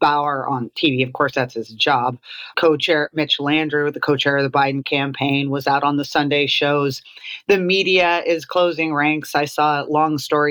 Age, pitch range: 40-59, 145-165 Hz